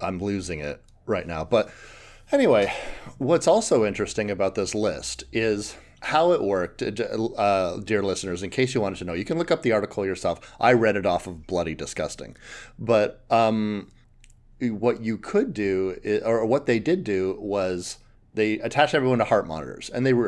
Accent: American